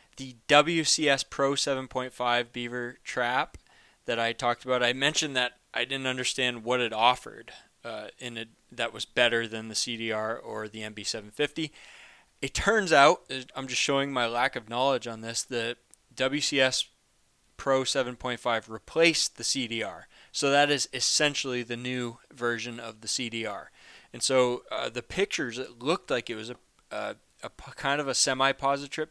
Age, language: 20-39, English